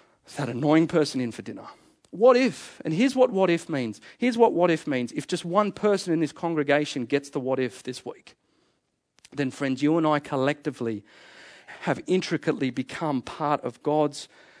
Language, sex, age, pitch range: English, male, 40-59, 130-160 Hz